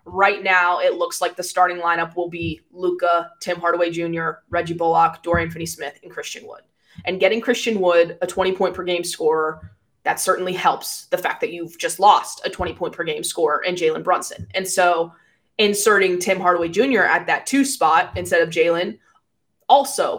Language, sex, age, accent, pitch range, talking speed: English, female, 20-39, American, 165-185 Hz, 165 wpm